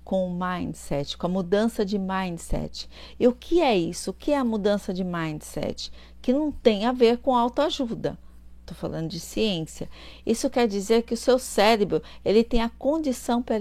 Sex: female